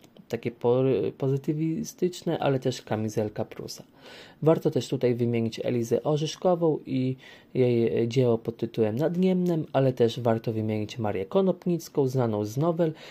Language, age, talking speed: Polish, 30-49, 125 wpm